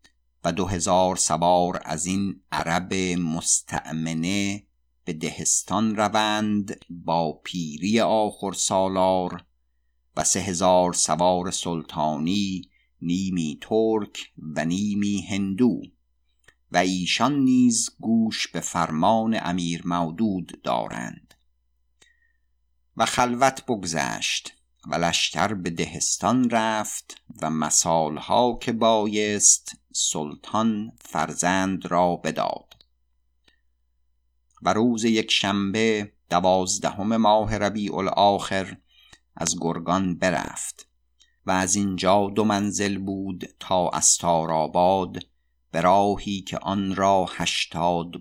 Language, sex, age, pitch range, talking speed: Persian, male, 50-69, 80-100 Hz, 90 wpm